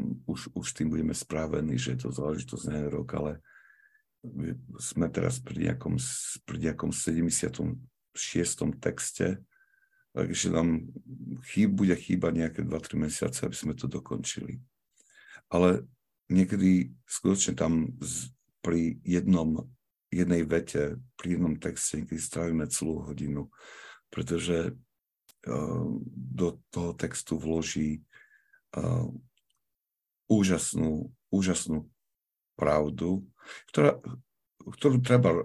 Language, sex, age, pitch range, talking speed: Slovak, male, 50-69, 75-90 Hz, 100 wpm